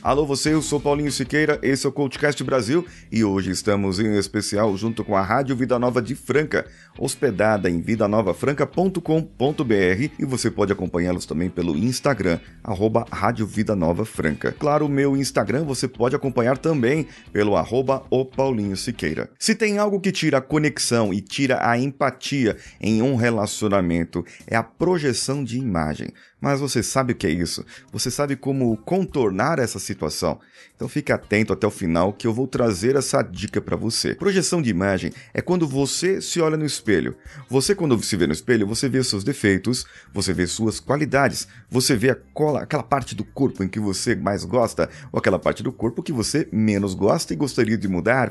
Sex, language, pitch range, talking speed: male, Portuguese, 105-140 Hz, 185 wpm